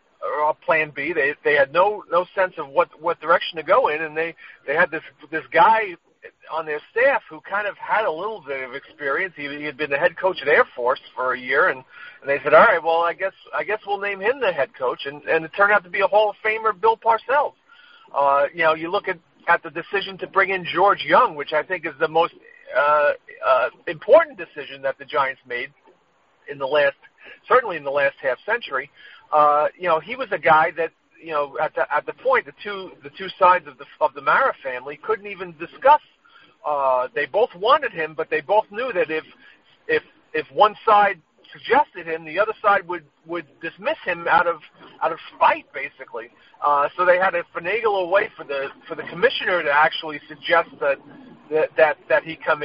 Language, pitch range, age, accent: English, 155-225 Hz, 50-69, American